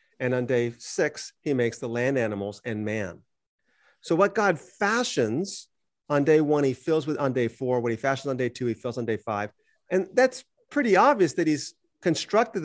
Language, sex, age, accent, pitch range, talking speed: English, male, 40-59, American, 120-180 Hz, 200 wpm